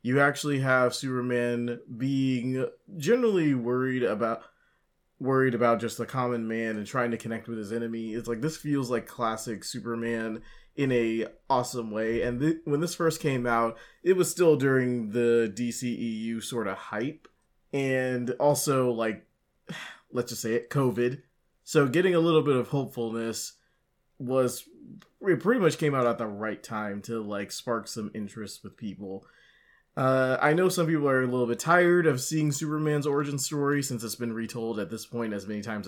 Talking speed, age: 175 wpm, 20-39